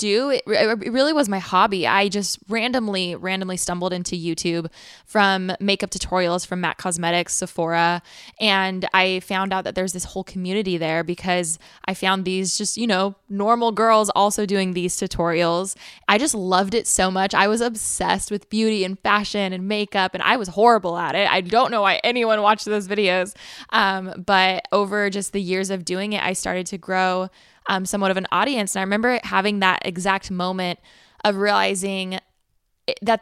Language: English